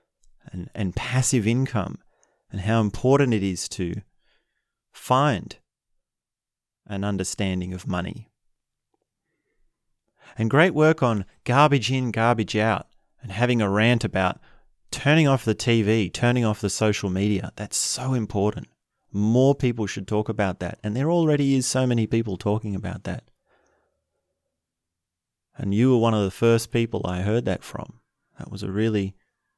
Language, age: English, 30-49